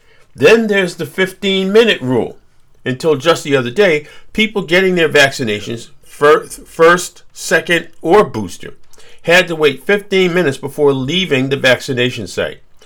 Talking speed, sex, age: 135 wpm, male, 50-69